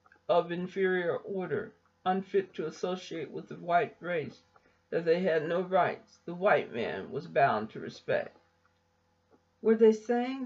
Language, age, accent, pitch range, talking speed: English, 50-69, American, 160-220 Hz, 145 wpm